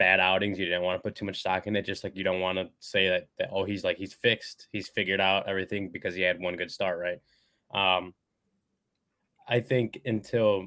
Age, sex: 20-39, male